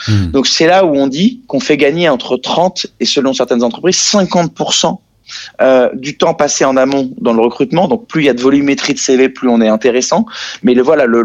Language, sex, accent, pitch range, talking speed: French, male, French, 135-185 Hz, 225 wpm